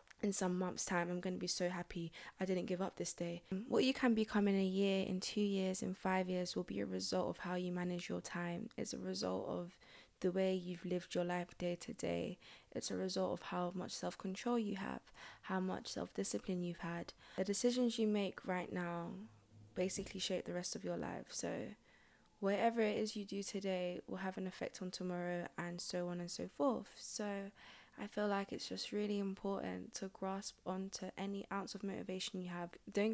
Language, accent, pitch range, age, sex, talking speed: English, British, 175-200 Hz, 20-39, female, 210 wpm